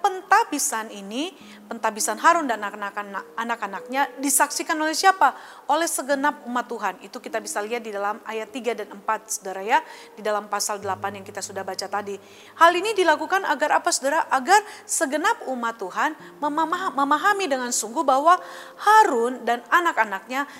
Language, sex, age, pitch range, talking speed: Indonesian, female, 30-49, 220-320 Hz, 150 wpm